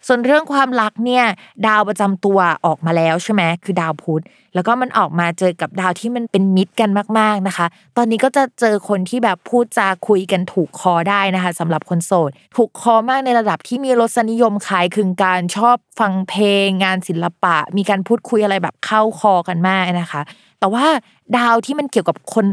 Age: 20-39